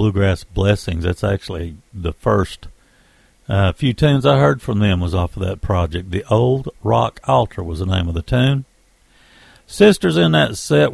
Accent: American